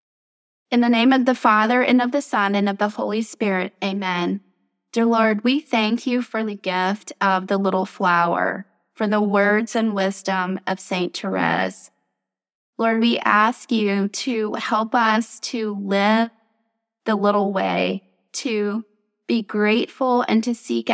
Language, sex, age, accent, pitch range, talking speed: English, female, 20-39, American, 185-225 Hz, 155 wpm